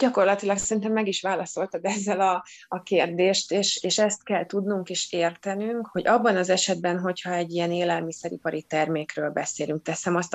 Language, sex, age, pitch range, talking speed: Hungarian, female, 20-39, 155-180 Hz, 160 wpm